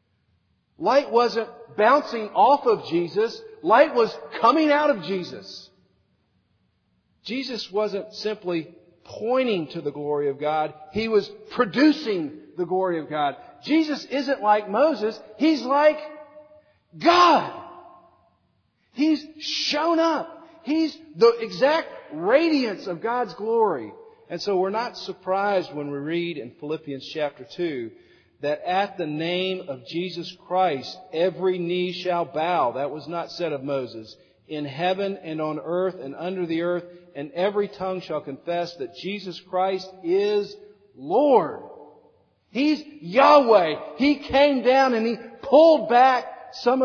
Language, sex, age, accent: English, male, 50-69, American